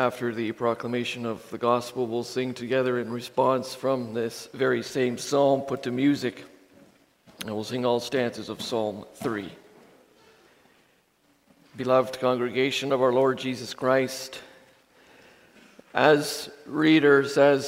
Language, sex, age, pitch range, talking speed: English, male, 50-69, 125-145 Hz, 125 wpm